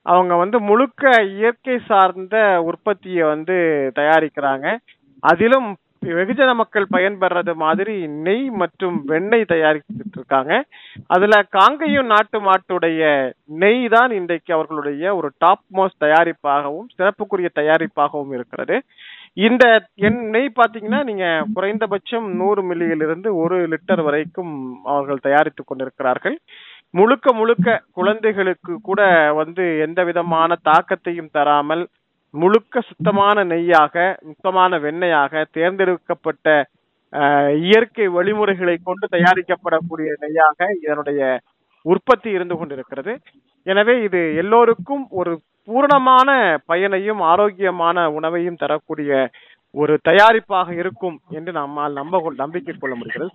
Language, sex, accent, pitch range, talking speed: Tamil, male, native, 155-210 Hz, 100 wpm